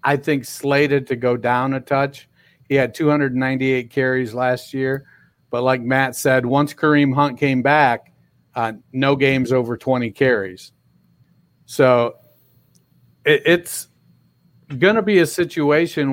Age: 50-69